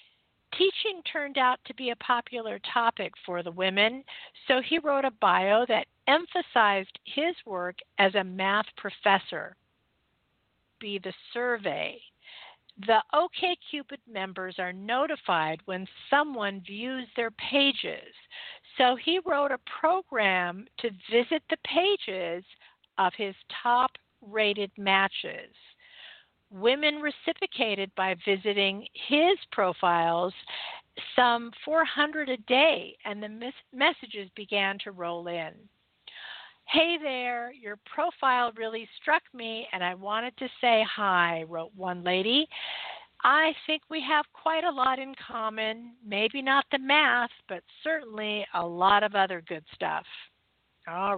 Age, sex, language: 50-69, female, English